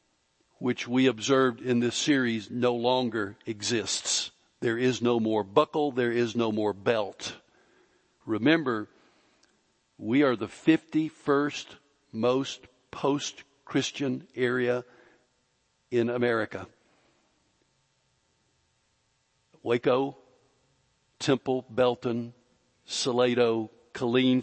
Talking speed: 85 wpm